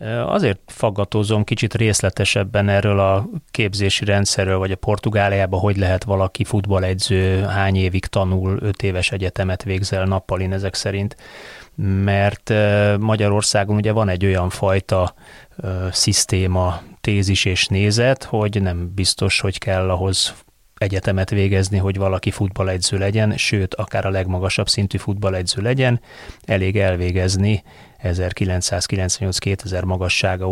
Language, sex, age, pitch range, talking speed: Hungarian, male, 30-49, 95-105 Hz, 115 wpm